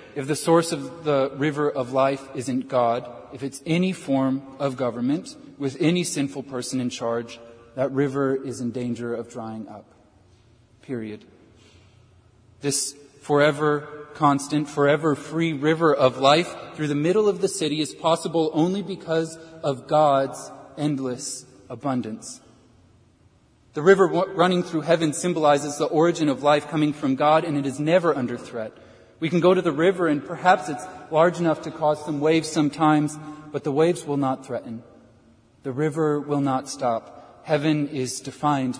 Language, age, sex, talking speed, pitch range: English, 30-49, male, 160 wpm, 125-155 Hz